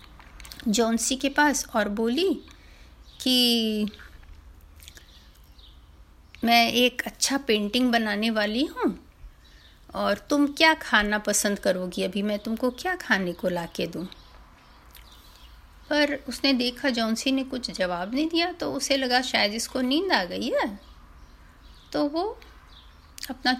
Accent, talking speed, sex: native, 125 wpm, female